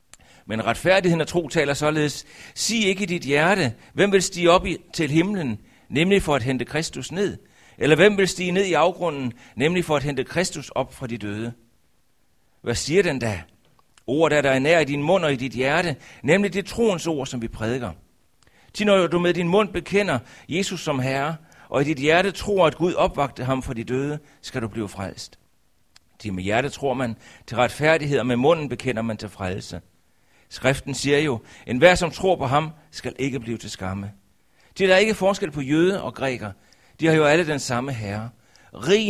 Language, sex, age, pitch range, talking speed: Danish, male, 60-79, 115-175 Hz, 205 wpm